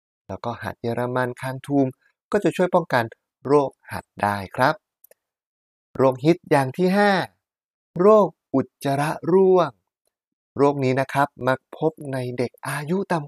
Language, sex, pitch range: Thai, male, 120-155 Hz